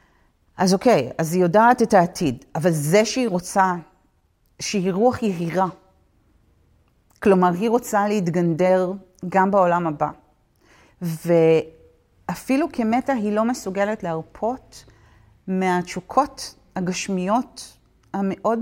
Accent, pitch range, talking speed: native, 180-220 Hz, 95 wpm